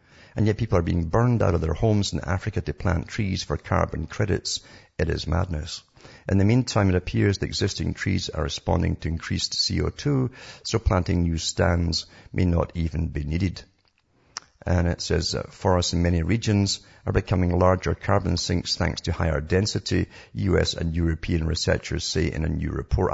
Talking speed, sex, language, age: 175 wpm, male, English, 50-69